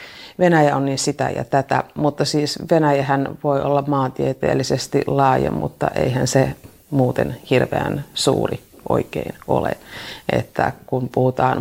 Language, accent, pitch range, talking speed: Finnish, native, 130-160 Hz, 120 wpm